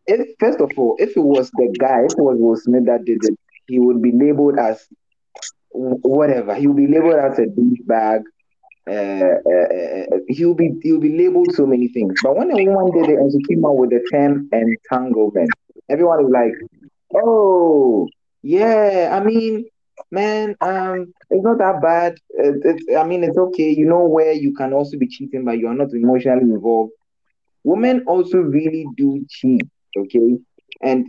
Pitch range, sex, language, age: 120-170 Hz, male, English, 20-39